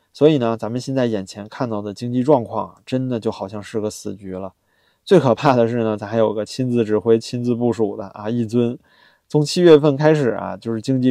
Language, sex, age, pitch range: Chinese, male, 20-39, 110-145 Hz